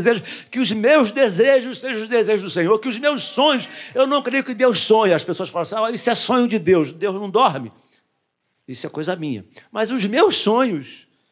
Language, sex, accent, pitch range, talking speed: Portuguese, male, Brazilian, 215-265 Hz, 210 wpm